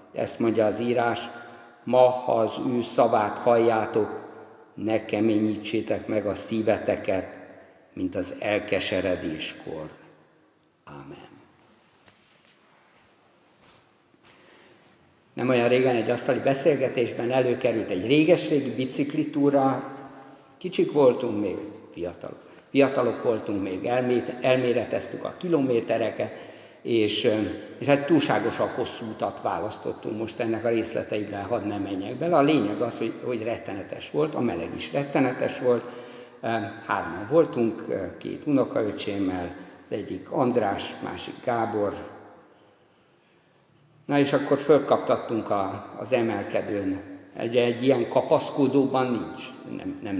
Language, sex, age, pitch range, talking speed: Hungarian, male, 60-79, 105-130 Hz, 105 wpm